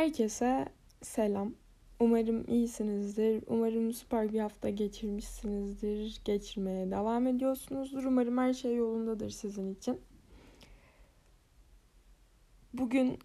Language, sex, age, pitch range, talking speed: Turkish, female, 10-29, 205-250 Hz, 85 wpm